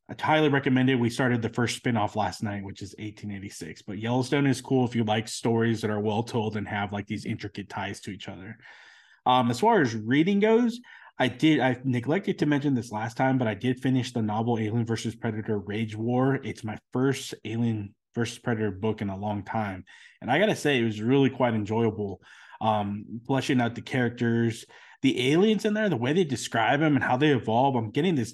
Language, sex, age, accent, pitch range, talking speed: English, male, 20-39, American, 110-130 Hz, 215 wpm